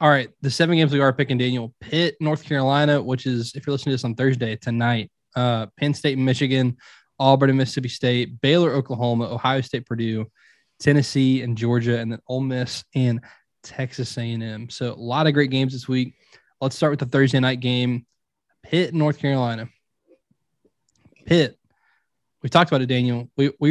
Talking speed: 180 wpm